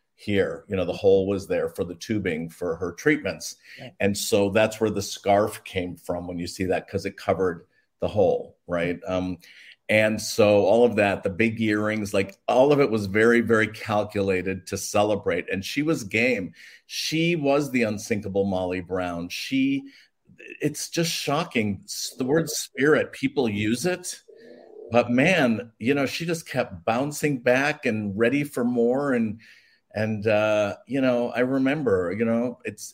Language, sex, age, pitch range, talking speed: English, male, 50-69, 105-140 Hz, 170 wpm